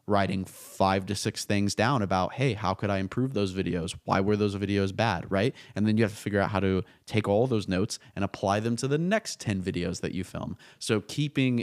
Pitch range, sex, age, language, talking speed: 95-110 Hz, male, 20-39, English, 235 wpm